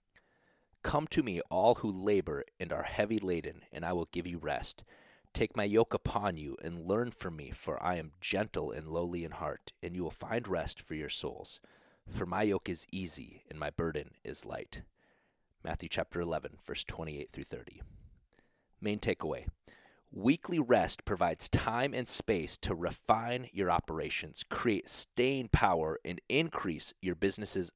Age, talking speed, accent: 30-49, 165 wpm, American